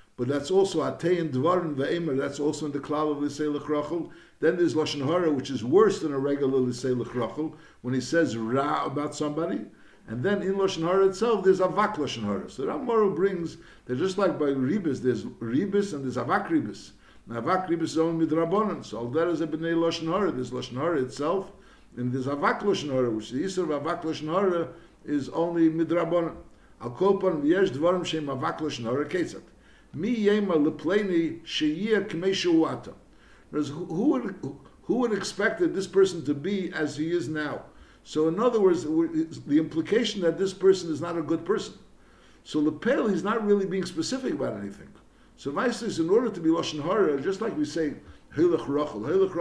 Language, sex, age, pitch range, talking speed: English, male, 60-79, 145-195 Hz, 180 wpm